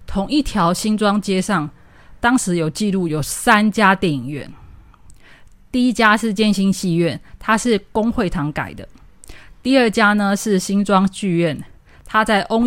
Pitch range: 170-230 Hz